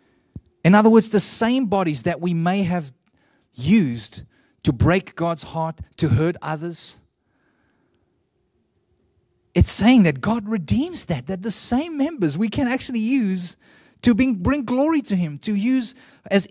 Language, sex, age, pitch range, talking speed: English, male, 30-49, 155-220 Hz, 145 wpm